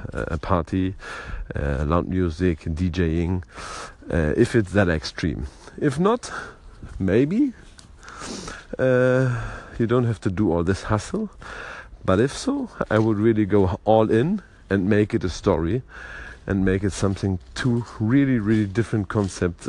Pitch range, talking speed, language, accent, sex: 85-105 Hz, 140 wpm, English, German, male